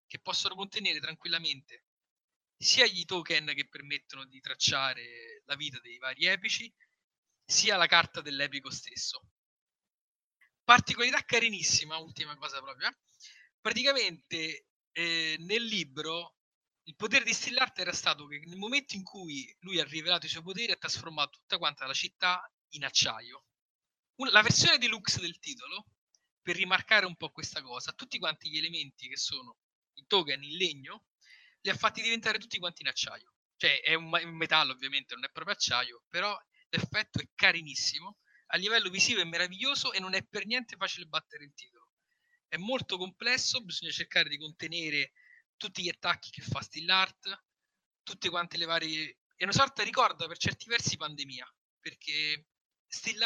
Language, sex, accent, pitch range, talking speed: Italian, male, native, 155-205 Hz, 160 wpm